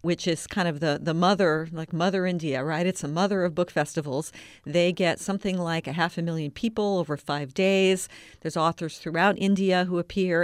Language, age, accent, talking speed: English, 50-69, American, 200 wpm